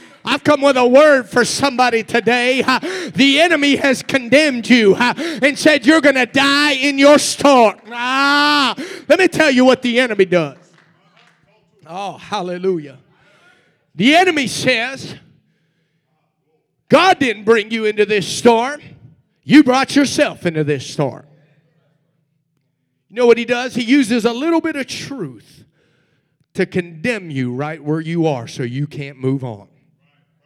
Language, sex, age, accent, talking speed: English, male, 40-59, American, 145 wpm